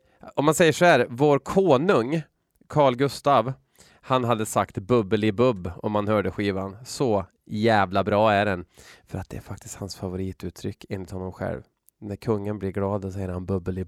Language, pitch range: Swedish, 105-135 Hz